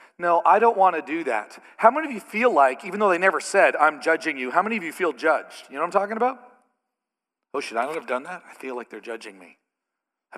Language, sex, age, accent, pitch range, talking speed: English, male, 40-59, American, 155-245 Hz, 270 wpm